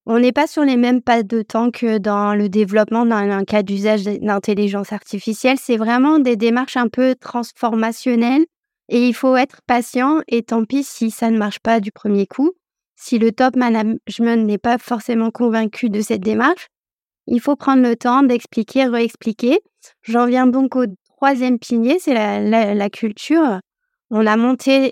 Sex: female